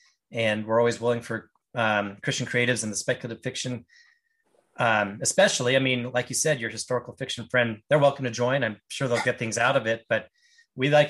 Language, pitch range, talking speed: English, 115-140 Hz, 205 wpm